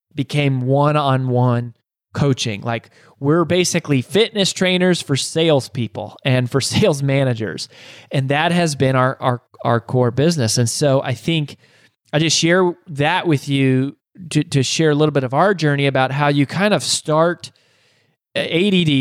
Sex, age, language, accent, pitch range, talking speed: male, 20-39, English, American, 130-155 Hz, 155 wpm